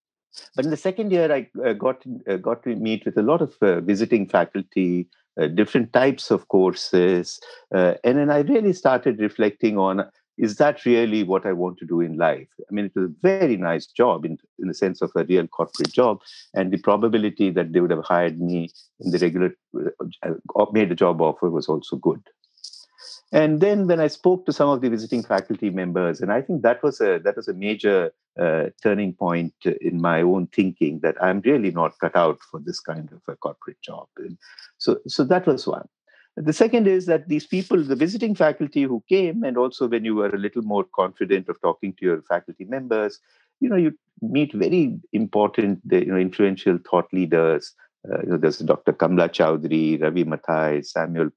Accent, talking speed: Indian, 205 wpm